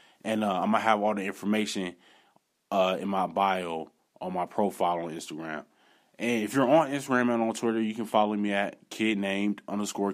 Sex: male